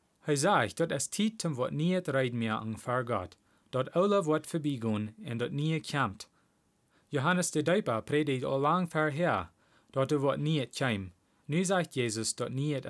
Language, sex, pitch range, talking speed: Dutch, male, 115-160 Hz, 165 wpm